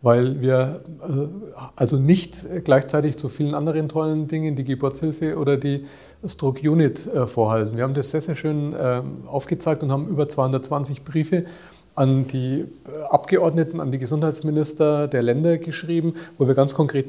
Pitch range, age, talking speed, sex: 130-160 Hz, 40-59, 150 wpm, male